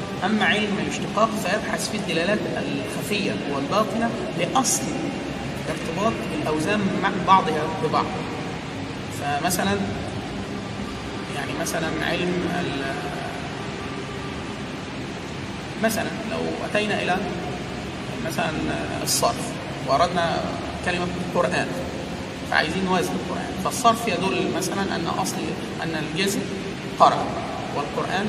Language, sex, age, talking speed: Arabic, male, 30-49, 85 wpm